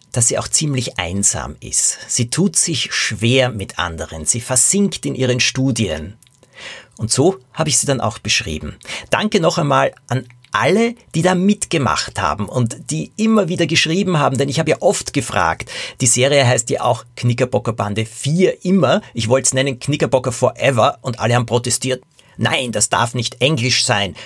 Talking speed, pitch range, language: 175 wpm, 115-145 Hz, German